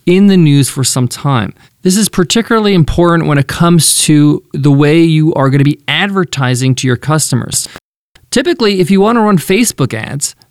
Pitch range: 140-195 Hz